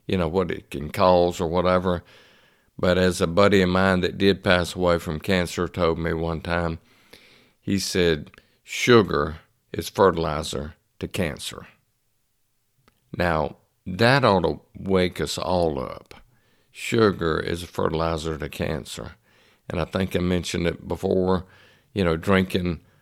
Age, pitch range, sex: 60-79, 85-105 Hz, male